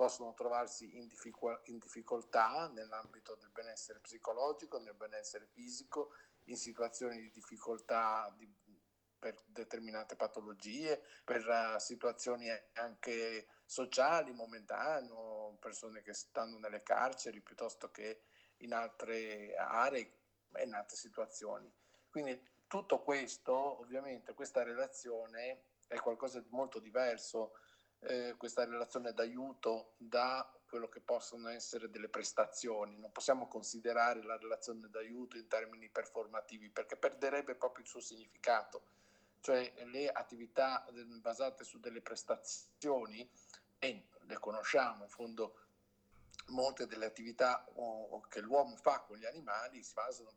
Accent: native